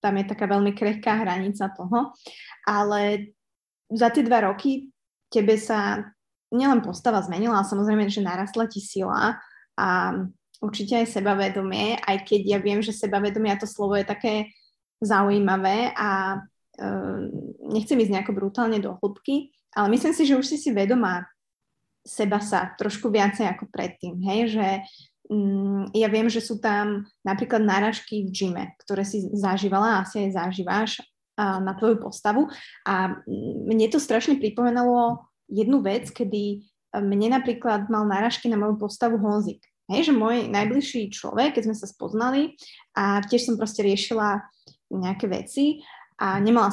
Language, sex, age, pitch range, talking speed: Slovak, female, 20-39, 200-230 Hz, 150 wpm